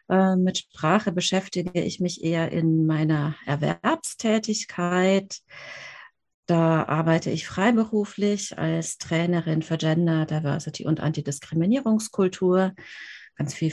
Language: German